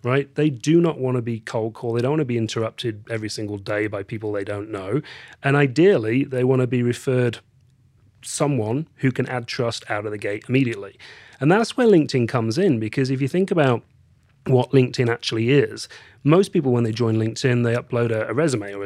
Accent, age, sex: British, 40-59, male